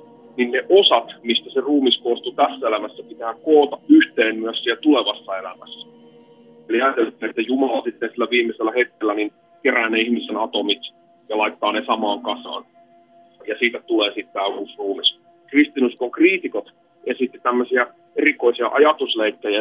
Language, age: Finnish, 30-49